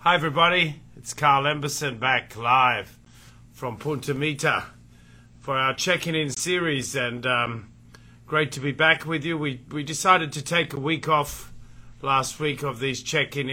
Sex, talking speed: male, 160 wpm